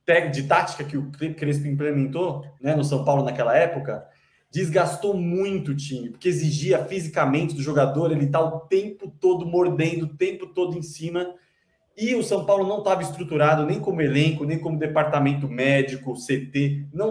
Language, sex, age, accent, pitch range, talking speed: Portuguese, male, 20-39, Brazilian, 150-195 Hz, 170 wpm